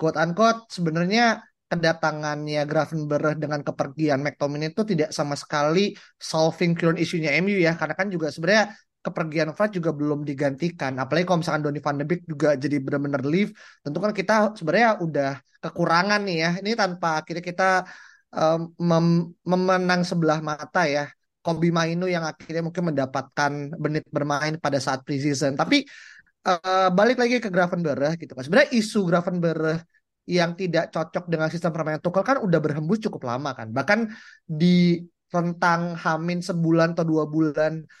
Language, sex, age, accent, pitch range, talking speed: Indonesian, male, 20-39, native, 155-185 Hz, 155 wpm